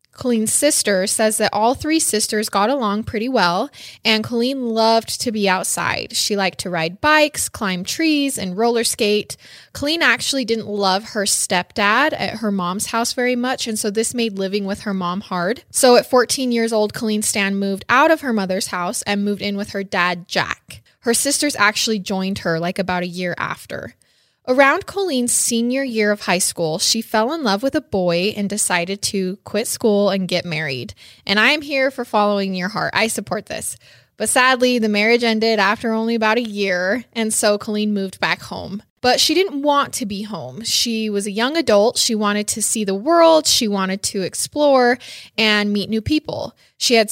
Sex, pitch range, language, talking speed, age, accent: female, 195-240 Hz, English, 195 wpm, 20-39, American